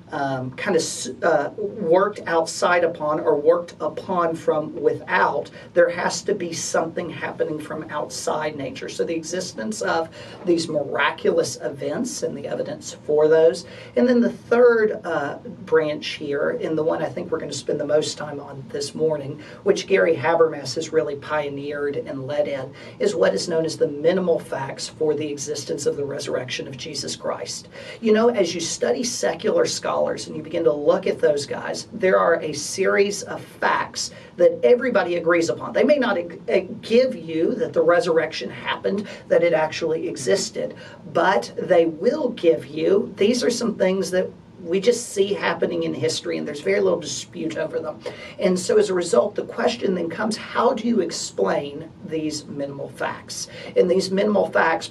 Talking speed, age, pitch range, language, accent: 175 wpm, 40-59, 155-205 Hz, English, American